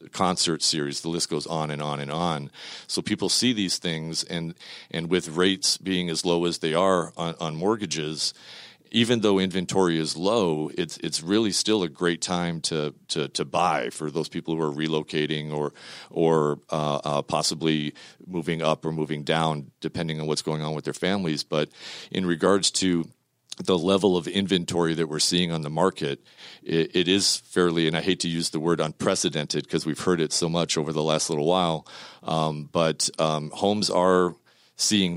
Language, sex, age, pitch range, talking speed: English, male, 40-59, 80-90 Hz, 190 wpm